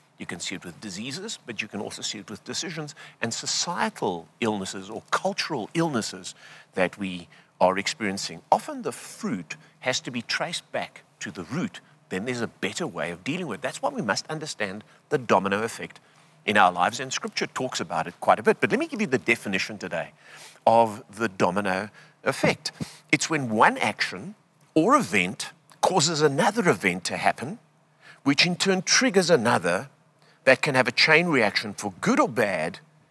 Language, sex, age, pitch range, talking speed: English, male, 50-69, 115-185 Hz, 185 wpm